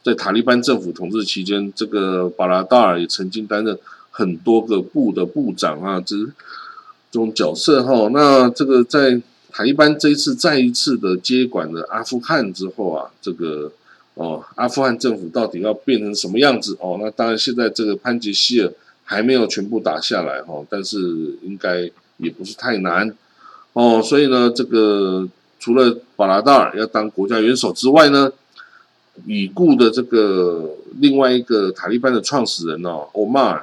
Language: Chinese